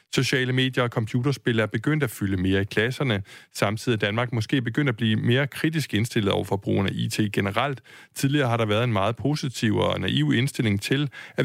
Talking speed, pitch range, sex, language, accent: 195 wpm, 105-135 Hz, male, Danish, native